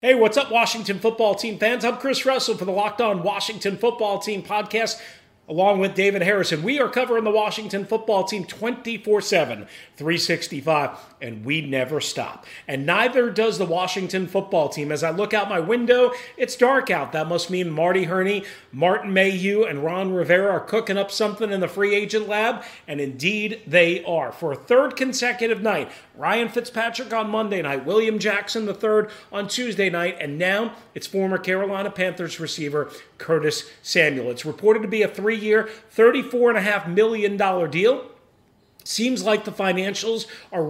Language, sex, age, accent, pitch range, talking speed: English, male, 40-59, American, 175-220 Hz, 170 wpm